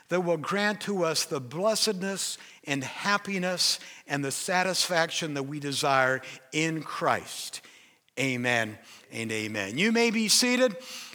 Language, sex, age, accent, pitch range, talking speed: English, male, 60-79, American, 185-240 Hz, 130 wpm